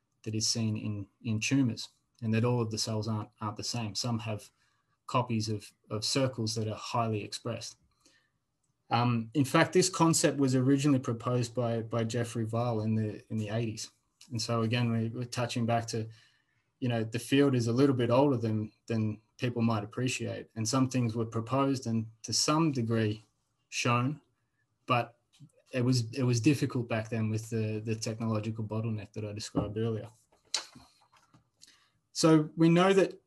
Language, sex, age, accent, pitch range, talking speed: English, male, 20-39, Australian, 110-135 Hz, 175 wpm